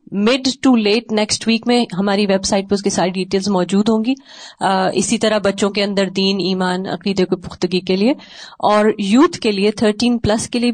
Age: 30-49